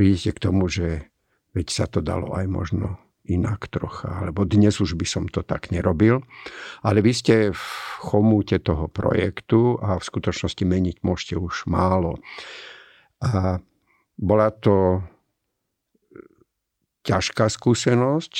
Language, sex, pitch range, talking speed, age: Slovak, male, 95-115 Hz, 125 wpm, 50-69